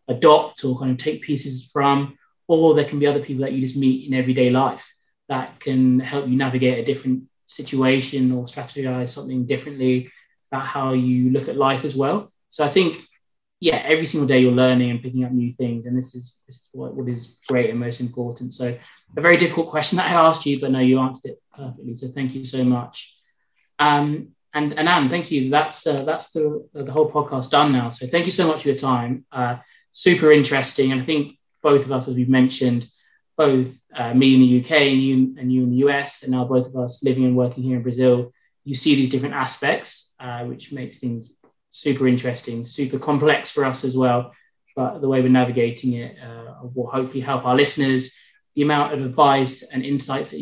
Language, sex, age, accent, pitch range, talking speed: English, male, 20-39, British, 125-140 Hz, 215 wpm